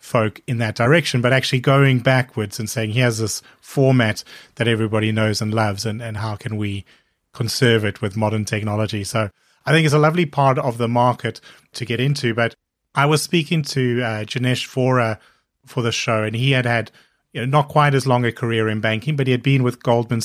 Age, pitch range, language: 30-49, 110-125 Hz, English